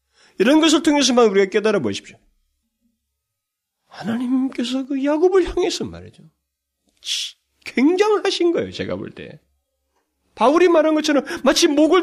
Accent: native